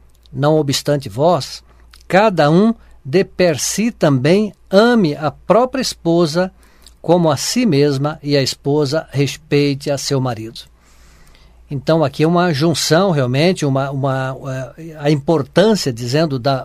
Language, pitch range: Portuguese, 135-175 Hz